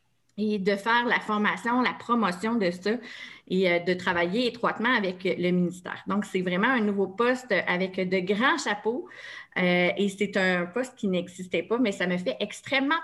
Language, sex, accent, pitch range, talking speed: French, female, Canadian, 185-235 Hz, 180 wpm